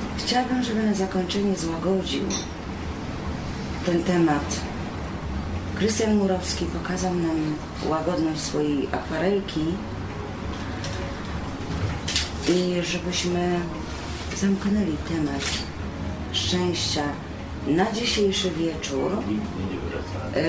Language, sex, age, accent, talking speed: Polish, female, 40-59, native, 65 wpm